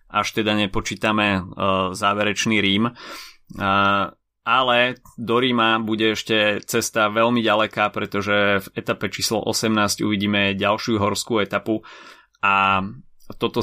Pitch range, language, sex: 100-110 Hz, Slovak, male